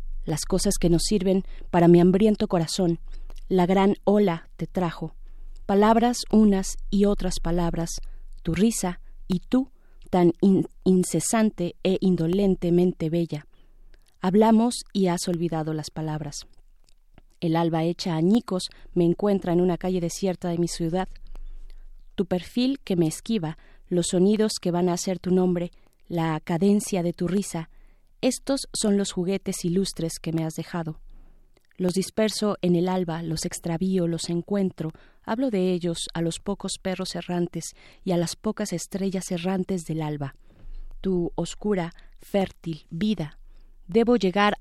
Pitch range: 170-195 Hz